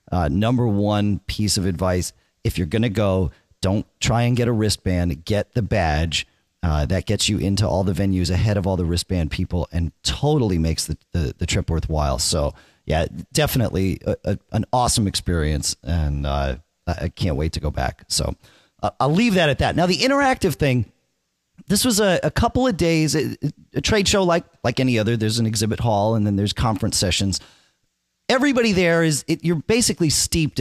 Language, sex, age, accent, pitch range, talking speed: English, male, 40-59, American, 90-125 Hz, 195 wpm